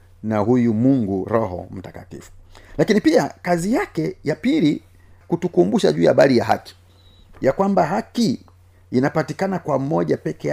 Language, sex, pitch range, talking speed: Swahili, male, 90-145 Hz, 135 wpm